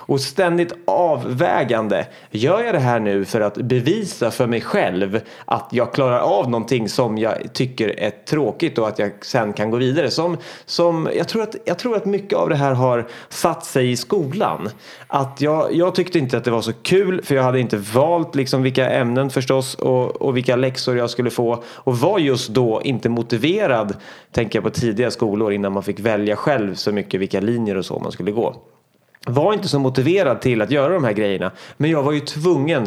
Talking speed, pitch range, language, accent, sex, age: 200 wpm, 115-145 Hz, Swedish, native, male, 30-49